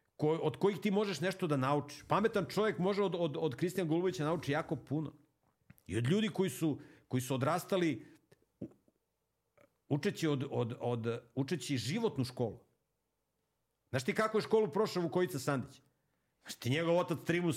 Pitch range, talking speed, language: 115-155 Hz, 155 wpm, Croatian